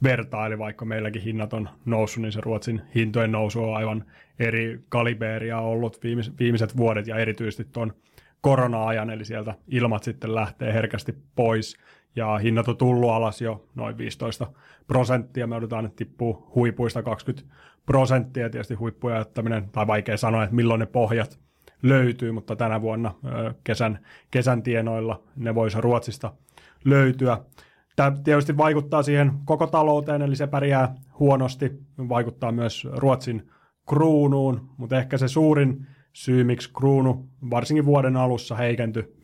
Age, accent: 30-49, native